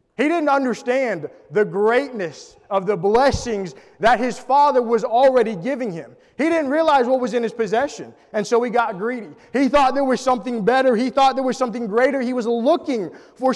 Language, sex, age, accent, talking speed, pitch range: English, male, 20-39, American, 195 wpm, 215-275 Hz